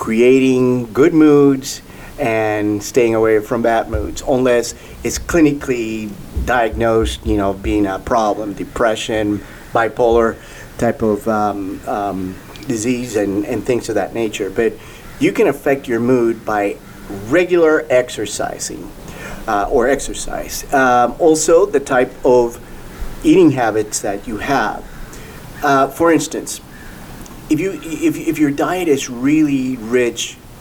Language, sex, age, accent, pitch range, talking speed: English, male, 40-59, American, 110-150 Hz, 125 wpm